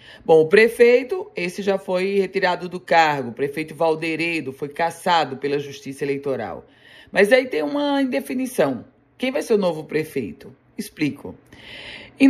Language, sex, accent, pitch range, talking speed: Portuguese, female, Brazilian, 155-210 Hz, 145 wpm